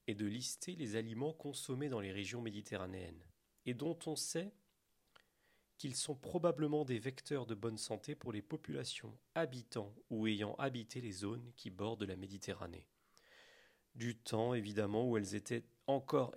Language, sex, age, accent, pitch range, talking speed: French, male, 40-59, French, 105-135 Hz, 150 wpm